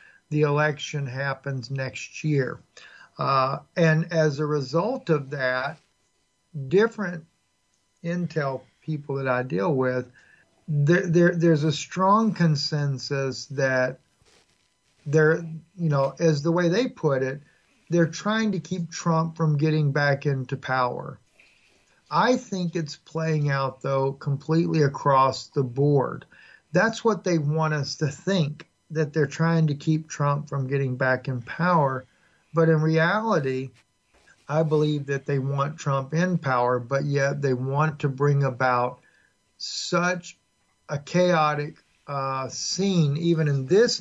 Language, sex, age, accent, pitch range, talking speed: English, male, 50-69, American, 135-165 Hz, 135 wpm